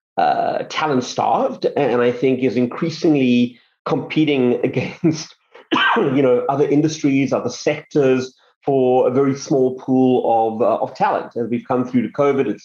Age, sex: 30-49, male